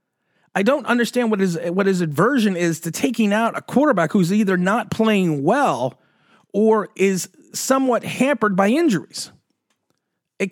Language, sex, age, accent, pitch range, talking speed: English, male, 30-49, American, 145-220 Hz, 150 wpm